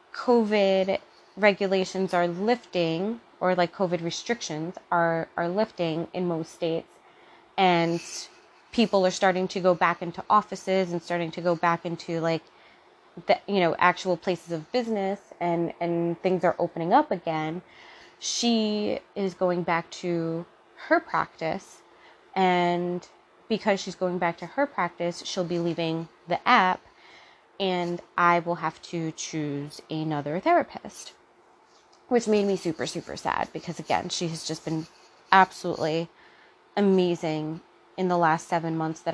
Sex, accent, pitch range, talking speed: female, American, 165-200 Hz, 140 wpm